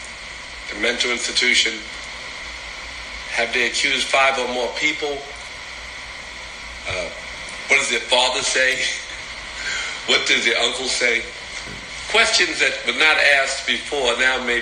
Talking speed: 120 wpm